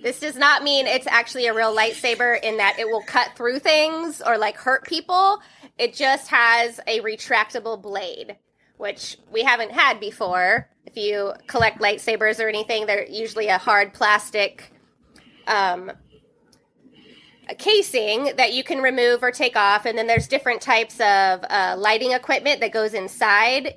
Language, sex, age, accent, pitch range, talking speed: English, female, 20-39, American, 215-265 Hz, 160 wpm